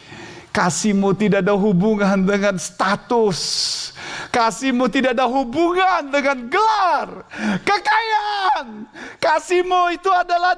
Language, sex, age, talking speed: Indonesian, male, 50-69, 90 wpm